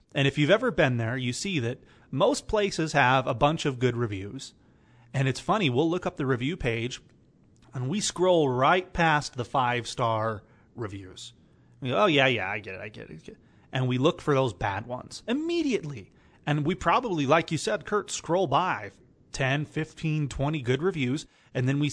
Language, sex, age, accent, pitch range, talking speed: English, male, 30-49, American, 120-155 Hz, 190 wpm